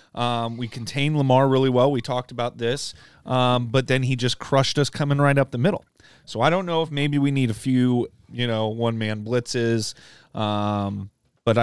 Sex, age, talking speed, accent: male, 30-49, 200 wpm, American